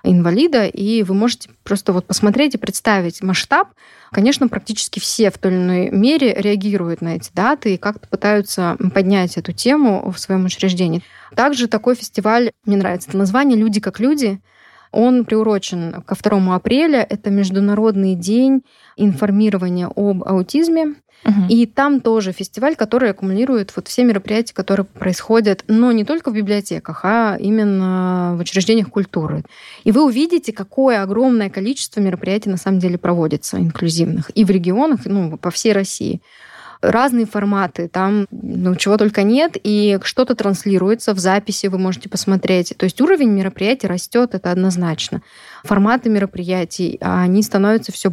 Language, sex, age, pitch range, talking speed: Russian, female, 20-39, 190-225 Hz, 145 wpm